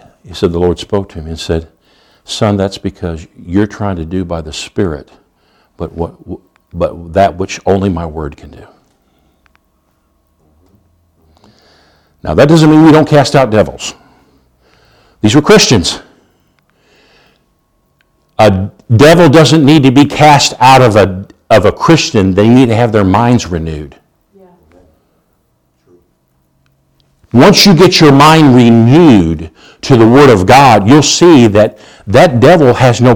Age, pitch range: 60-79, 85-130 Hz